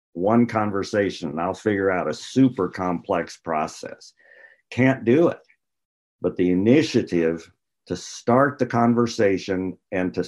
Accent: American